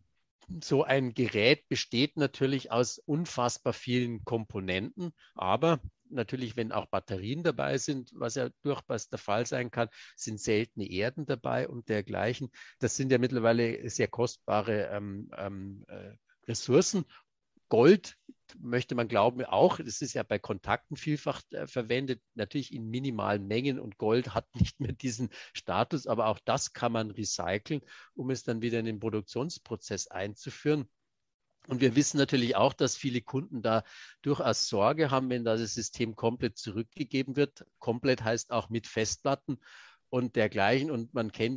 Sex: male